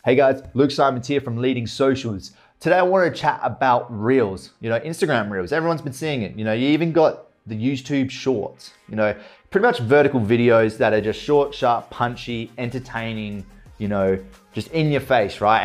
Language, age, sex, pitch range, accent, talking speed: English, 30-49, male, 110-140 Hz, Australian, 195 wpm